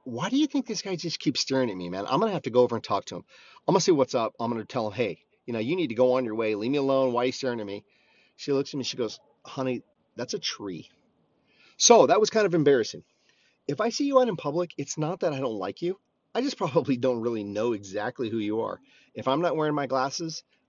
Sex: male